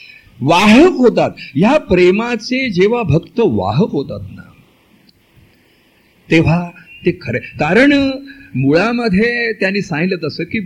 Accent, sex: native, male